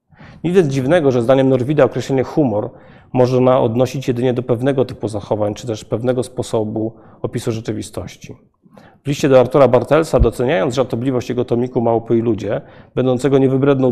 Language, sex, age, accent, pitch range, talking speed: Polish, male, 40-59, native, 120-140 Hz, 150 wpm